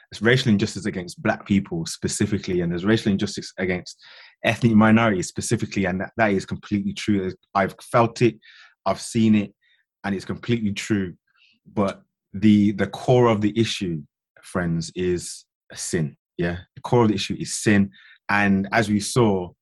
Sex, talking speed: male, 165 wpm